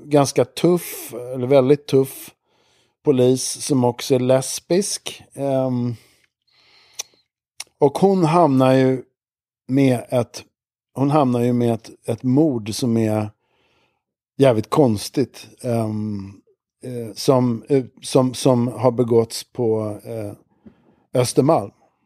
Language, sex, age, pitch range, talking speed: Swedish, male, 50-69, 110-140 Hz, 100 wpm